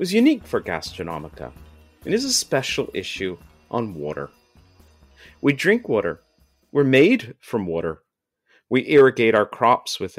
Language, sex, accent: English, male, American